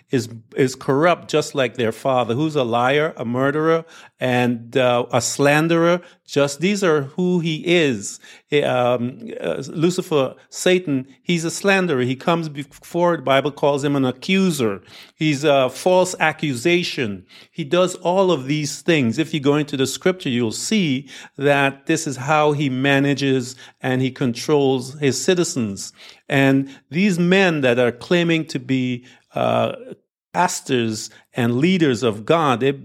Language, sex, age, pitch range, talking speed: English, male, 50-69, 125-165 Hz, 150 wpm